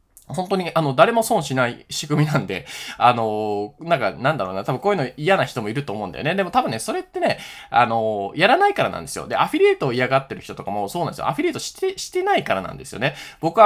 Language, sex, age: Japanese, male, 20-39